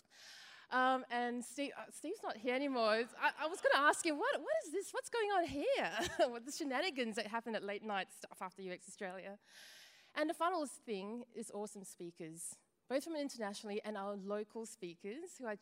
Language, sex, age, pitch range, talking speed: English, female, 20-39, 205-270 Hz, 195 wpm